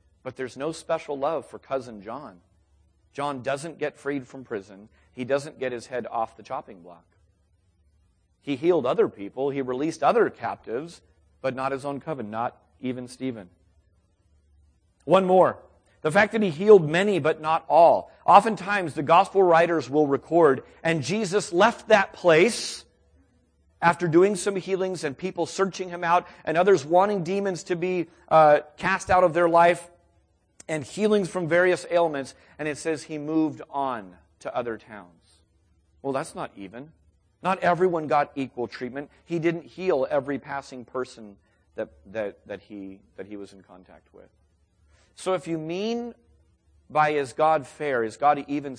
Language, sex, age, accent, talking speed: English, male, 40-59, American, 160 wpm